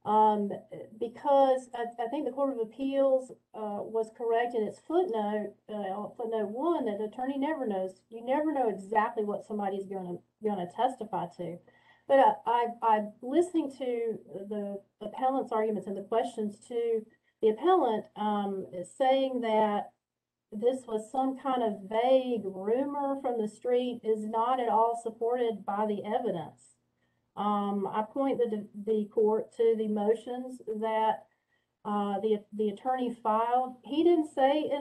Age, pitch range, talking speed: 40-59, 215-250 Hz, 155 wpm